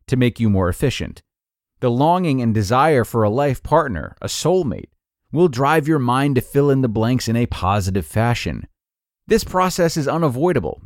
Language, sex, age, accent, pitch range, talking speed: English, male, 30-49, American, 105-145 Hz, 175 wpm